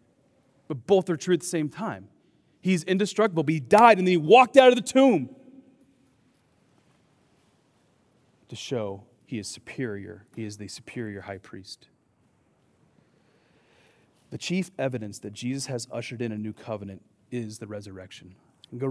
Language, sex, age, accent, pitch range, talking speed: English, male, 30-49, American, 115-165 Hz, 150 wpm